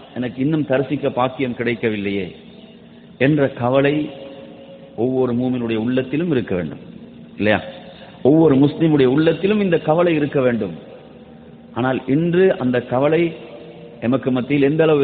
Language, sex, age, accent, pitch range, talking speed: English, male, 50-69, Indian, 115-155 Hz, 110 wpm